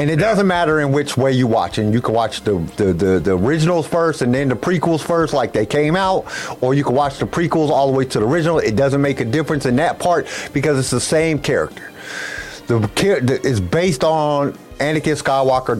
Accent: American